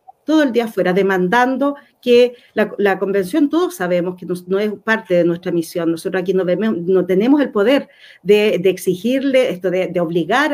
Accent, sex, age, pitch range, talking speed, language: American, female, 40-59, 190-255 Hz, 190 wpm, Spanish